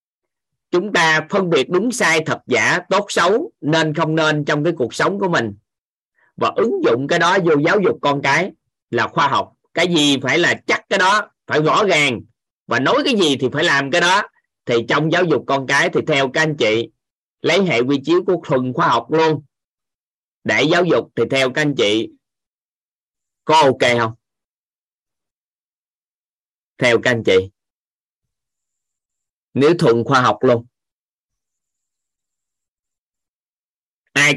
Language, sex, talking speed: Vietnamese, male, 160 wpm